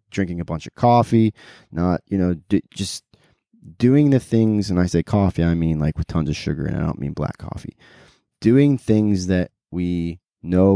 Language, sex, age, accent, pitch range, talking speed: English, male, 20-39, American, 85-105 Hz, 190 wpm